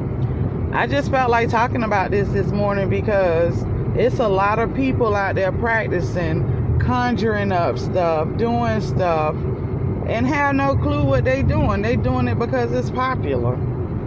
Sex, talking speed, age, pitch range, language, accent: female, 155 wpm, 30-49, 115-150 Hz, English, American